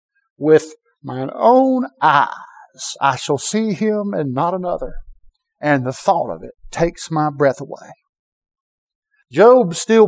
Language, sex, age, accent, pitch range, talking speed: English, male, 60-79, American, 155-225 Hz, 130 wpm